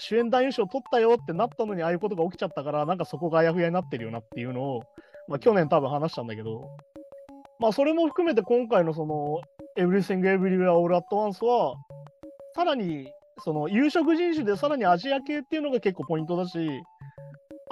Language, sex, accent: Japanese, male, native